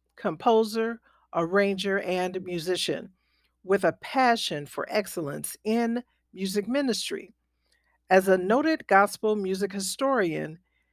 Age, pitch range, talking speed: 50-69, 170-230 Hz, 100 wpm